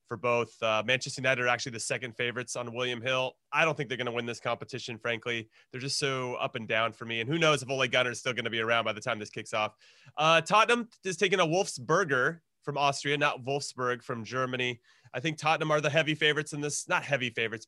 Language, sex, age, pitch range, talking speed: English, male, 30-49, 125-160 Hz, 250 wpm